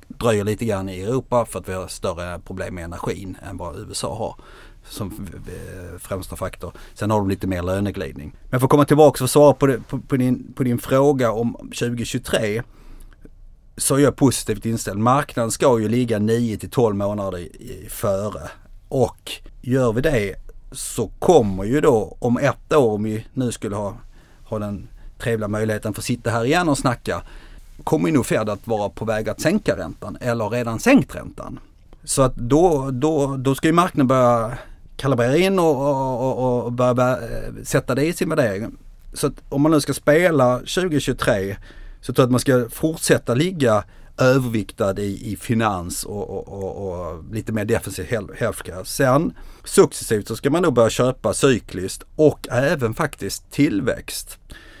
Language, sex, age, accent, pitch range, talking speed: Swedish, male, 30-49, native, 100-135 Hz, 175 wpm